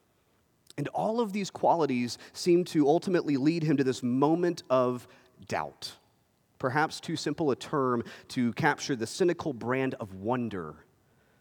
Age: 30-49